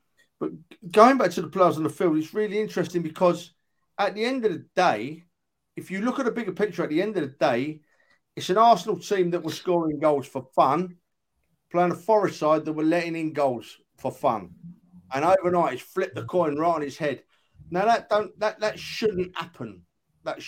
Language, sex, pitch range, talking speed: English, male, 140-195 Hz, 210 wpm